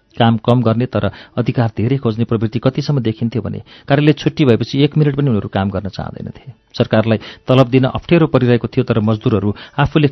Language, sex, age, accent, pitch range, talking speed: English, male, 50-69, Indian, 110-135 Hz, 225 wpm